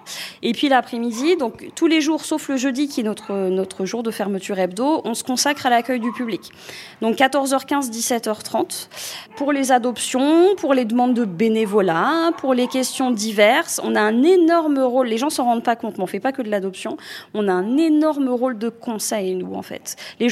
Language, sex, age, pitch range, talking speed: French, female, 20-39, 210-260 Hz, 210 wpm